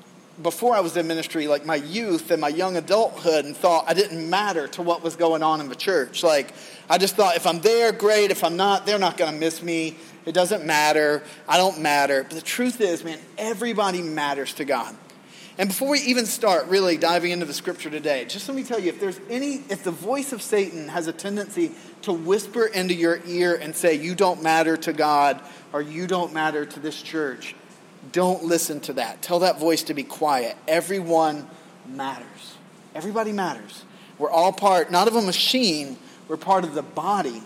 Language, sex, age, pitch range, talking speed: English, male, 30-49, 155-195 Hz, 205 wpm